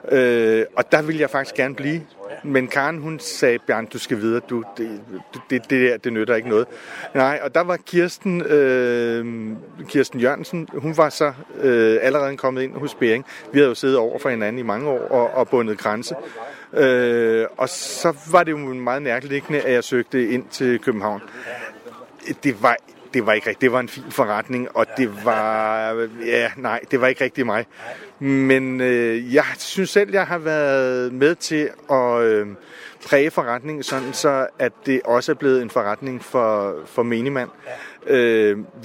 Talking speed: 185 wpm